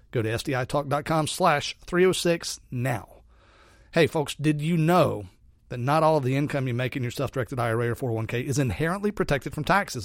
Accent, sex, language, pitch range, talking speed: American, male, English, 125-155 Hz, 180 wpm